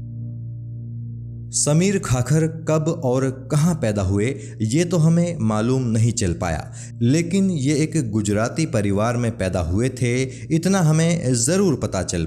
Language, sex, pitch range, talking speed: Hindi, male, 105-130 Hz, 135 wpm